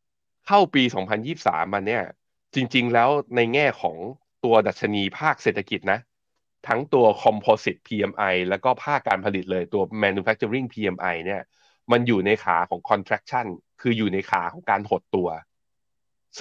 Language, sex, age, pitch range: Thai, male, 20-39, 100-125 Hz